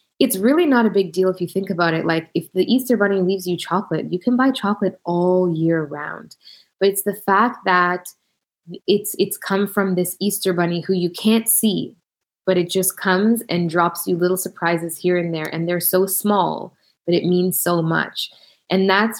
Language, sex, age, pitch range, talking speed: English, female, 20-39, 175-205 Hz, 205 wpm